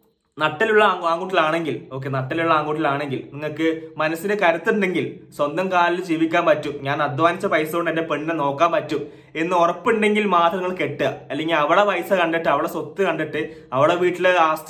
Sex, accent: male, native